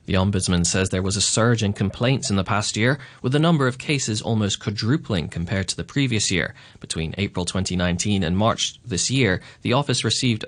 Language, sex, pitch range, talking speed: English, male, 95-125 Hz, 200 wpm